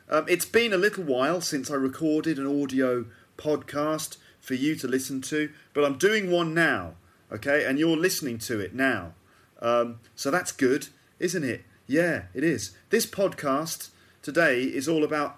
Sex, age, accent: male, 30-49, British